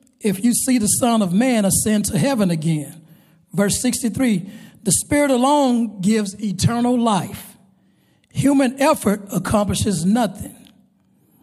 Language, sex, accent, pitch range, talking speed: English, male, American, 190-245 Hz, 120 wpm